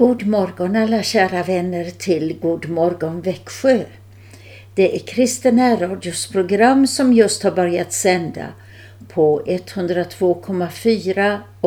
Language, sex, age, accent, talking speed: Swedish, female, 60-79, native, 110 wpm